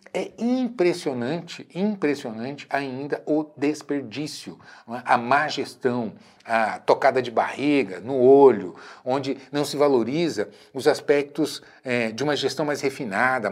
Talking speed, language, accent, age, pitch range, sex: 115 wpm, Portuguese, Brazilian, 60-79, 145-210 Hz, male